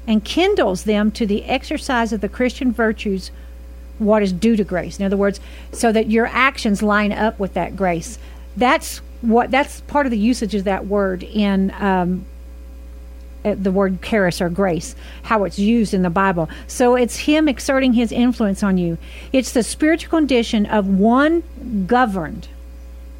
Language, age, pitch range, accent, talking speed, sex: English, 50-69, 190-245 Hz, American, 170 wpm, female